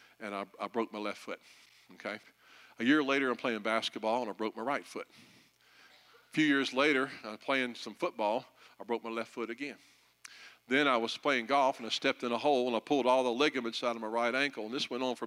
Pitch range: 115-135 Hz